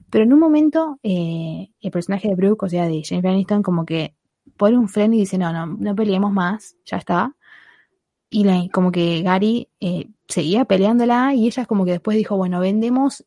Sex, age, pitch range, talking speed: female, 20-39, 175-220 Hz, 200 wpm